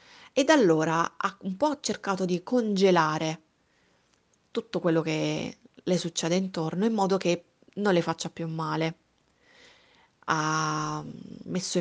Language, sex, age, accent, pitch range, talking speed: Italian, female, 30-49, native, 155-200 Hz, 125 wpm